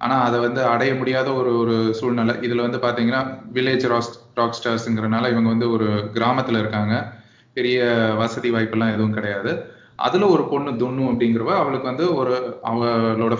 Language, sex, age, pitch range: Tamil, male, 20-39, 115-130 Hz